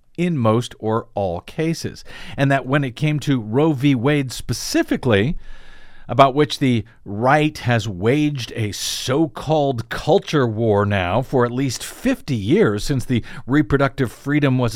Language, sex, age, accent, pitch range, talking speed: English, male, 50-69, American, 115-180 Hz, 145 wpm